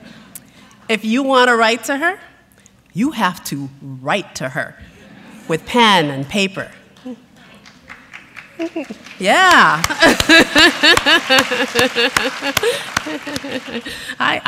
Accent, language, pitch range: American, English, 170-250 Hz